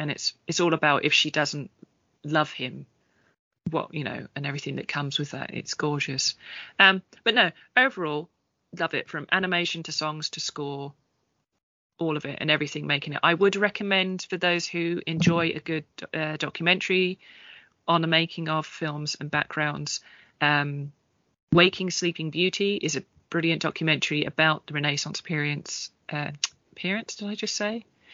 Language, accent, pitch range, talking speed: English, British, 145-170 Hz, 160 wpm